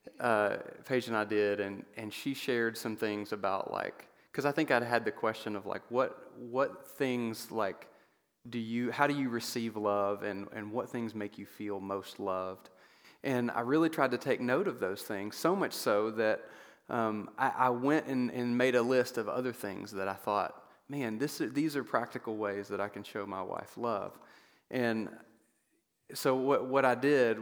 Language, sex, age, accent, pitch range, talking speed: English, male, 30-49, American, 110-135 Hz, 195 wpm